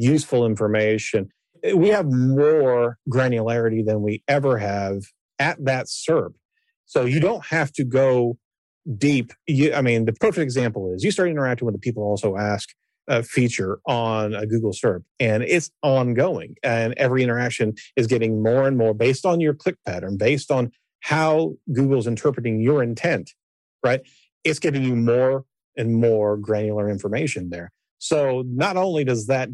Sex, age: male, 40-59